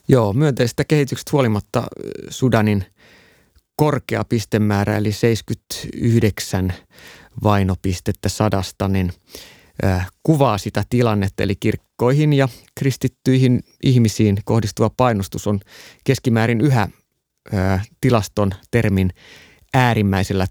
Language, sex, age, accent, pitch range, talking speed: Finnish, male, 30-49, native, 100-125 Hz, 90 wpm